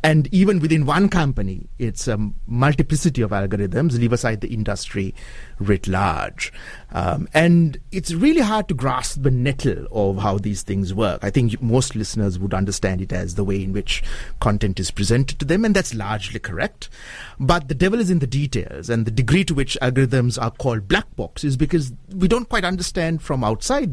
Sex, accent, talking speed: male, Indian, 190 wpm